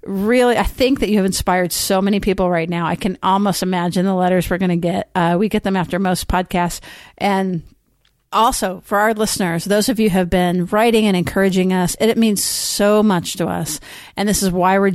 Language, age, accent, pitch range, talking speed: English, 50-69, American, 175-205 Hz, 215 wpm